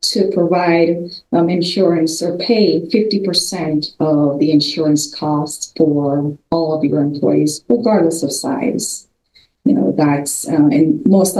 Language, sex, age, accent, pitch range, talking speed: English, female, 30-49, American, 155-195 Hz, 130 wpm